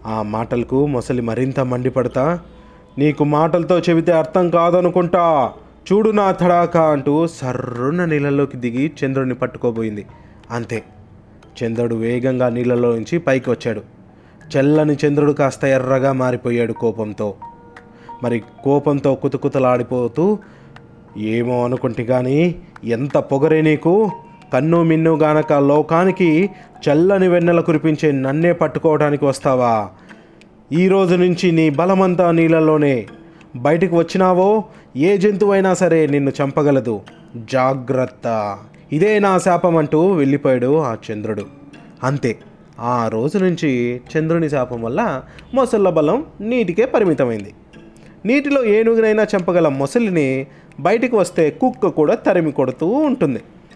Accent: native